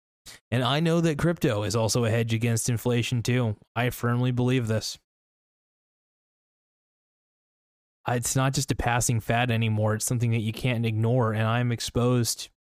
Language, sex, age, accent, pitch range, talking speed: English, male, 20-39, American, 110-125 Hz, 150 wpm